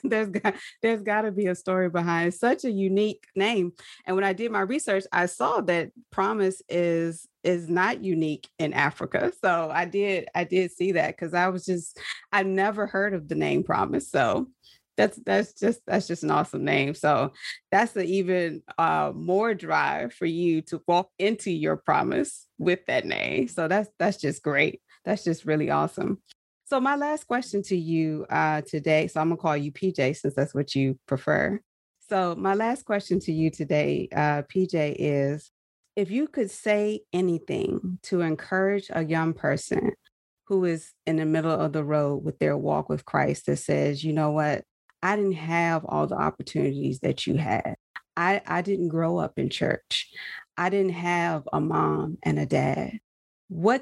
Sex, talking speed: female, 185 wpm